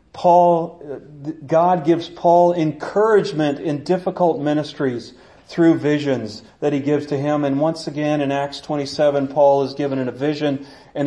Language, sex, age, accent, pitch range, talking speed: English, male, 40-59, American, 135-180 Hz, 150 wpm